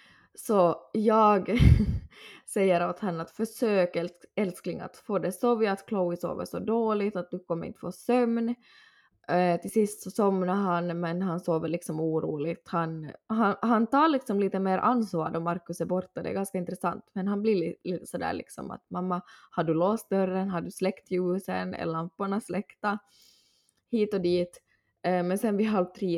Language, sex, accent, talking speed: Swedish, female, native, 180 wpm